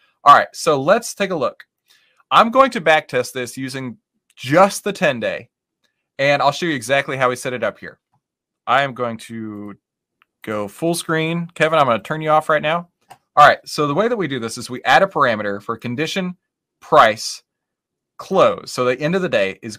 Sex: male